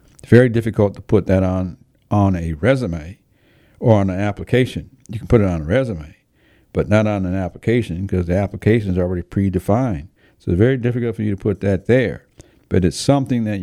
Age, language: 60-79, English